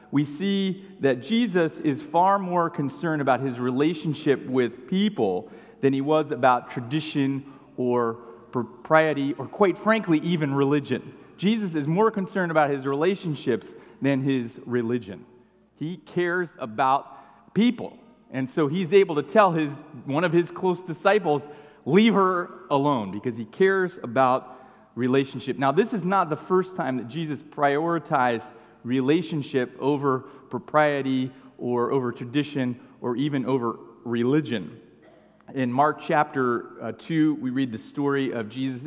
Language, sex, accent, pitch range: English, male, American, 125-165 Hz